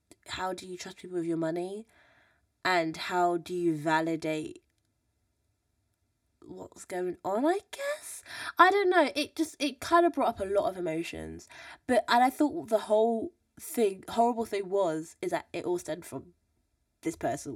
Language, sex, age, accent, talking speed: English, female, 20-39, British, 170 wpm